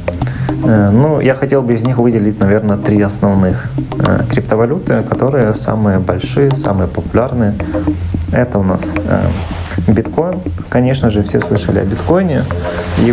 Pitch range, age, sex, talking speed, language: 100-125 Hz, 30-49, male, 135 wpm, Russian